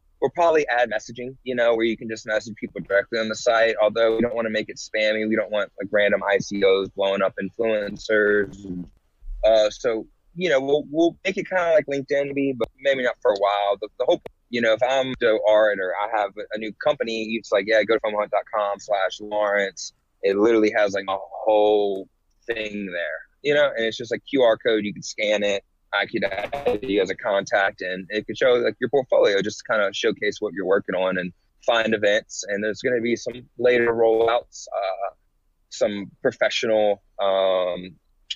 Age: 20-39